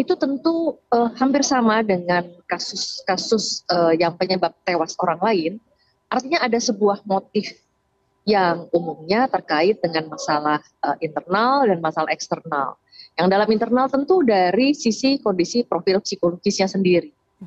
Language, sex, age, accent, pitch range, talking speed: Indonesian, female, 30-49, native, 170-240 Hz, 125 wpm